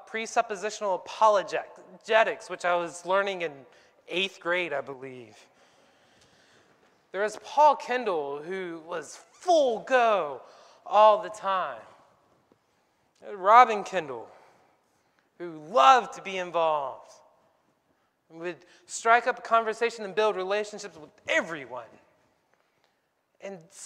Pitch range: 180-225 Hz